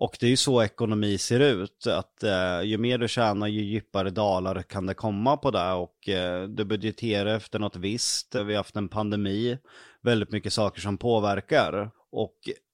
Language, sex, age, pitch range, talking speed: Swedish, male, 30-49, 95-110 Hz, 190 wpm